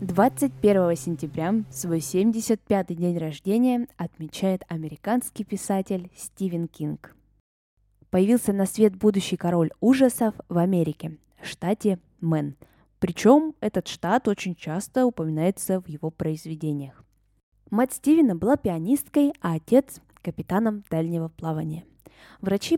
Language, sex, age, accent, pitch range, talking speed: Russian, female, 20-39, native, 165-230 Hz, 105 wpm